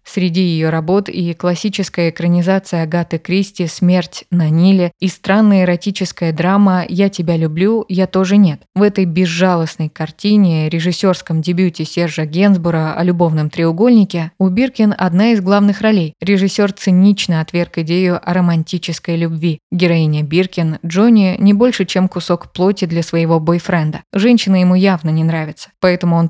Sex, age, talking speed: female, 20-39, 155 wpm